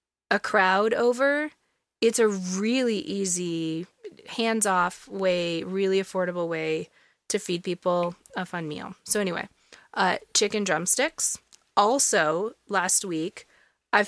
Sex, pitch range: female, 165-200 Hz